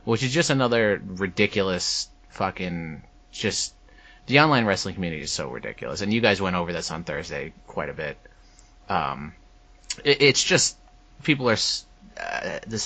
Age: 30-49